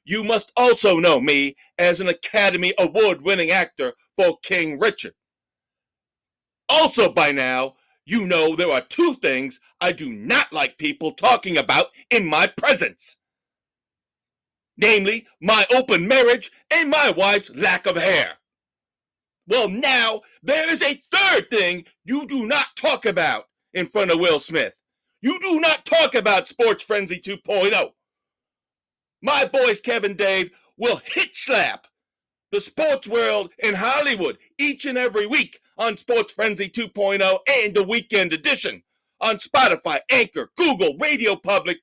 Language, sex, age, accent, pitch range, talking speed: English, male, 50-69, American, 195-290 Hz, 140 wpm